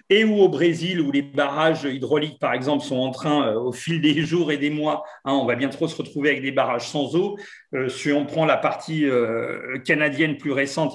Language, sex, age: French, male, 40-59